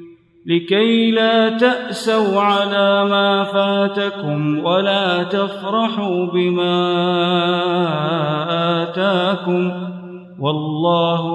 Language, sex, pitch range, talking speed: Arabic, male, 170-195 Hz, 60 wpm